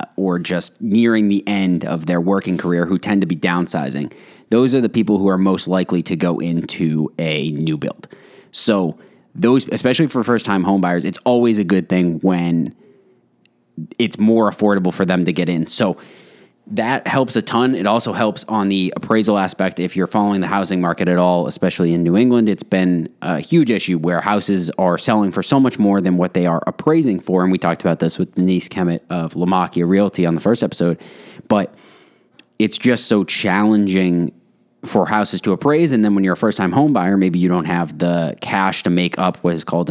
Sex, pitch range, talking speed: male, 90-105 Hz, 205 wpm